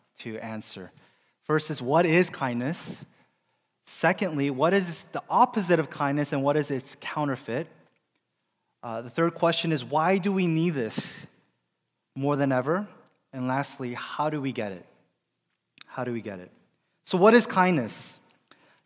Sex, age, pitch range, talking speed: male, 20-39, 140-175 Hz, 155 wpm